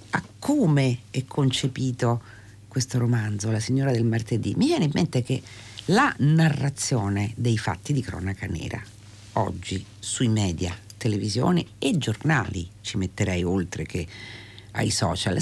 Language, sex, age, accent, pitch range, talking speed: Italian, female, 50-69, native, 110-155 Hz, 130 wpm